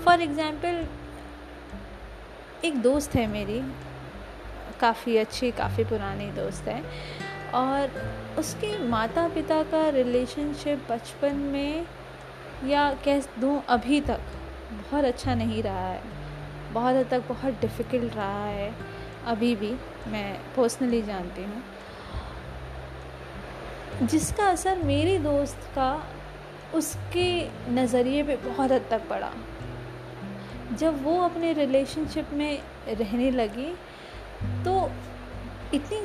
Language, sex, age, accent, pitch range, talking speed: Hindi, female, 20-39, native, 210-295 Hz, 105 wpm